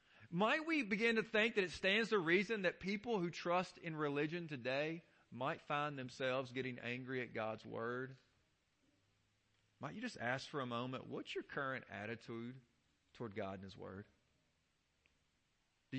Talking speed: 160 wpm